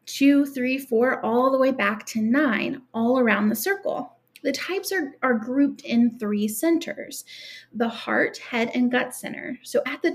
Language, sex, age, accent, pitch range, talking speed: English, female, 30-49, American, 230-295 Hz, 180 wpm